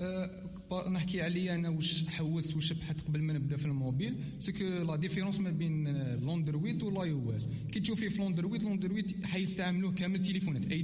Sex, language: male, Arabic